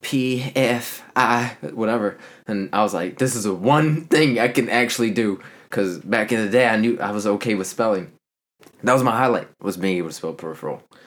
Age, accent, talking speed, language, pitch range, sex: 20-39, American, 210 wpm, English, 105-145 Hz, male